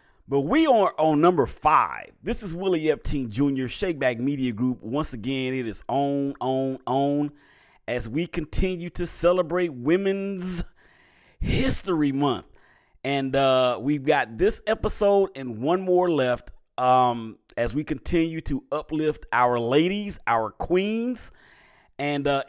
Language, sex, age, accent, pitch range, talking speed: English, male, 30-49, American, 125-170 Hz, 135 wpm